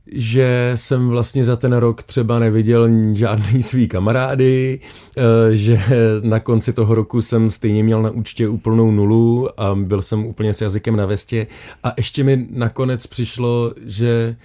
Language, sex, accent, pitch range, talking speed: Czech, male, native, 105-125 Hz, 155 wpm